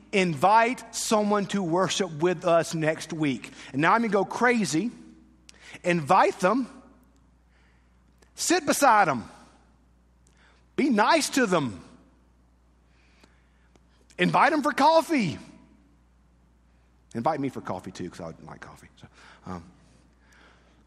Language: English